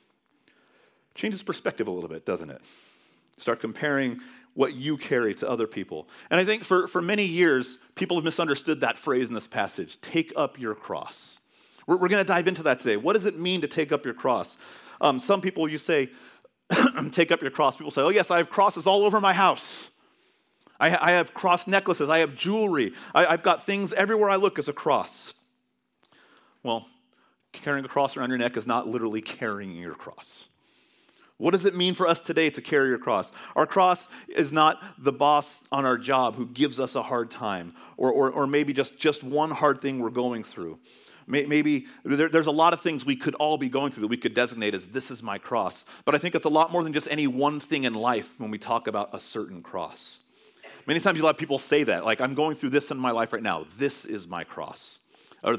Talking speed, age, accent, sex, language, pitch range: 220 wpm, 40-59, American, male, English, 125-170 Hz